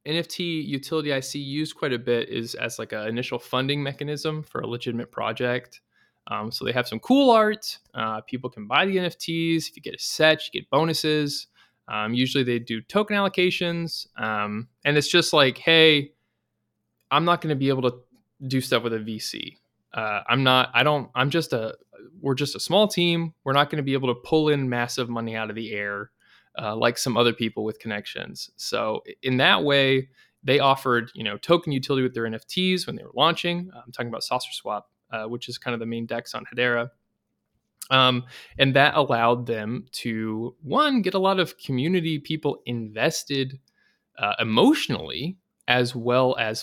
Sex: male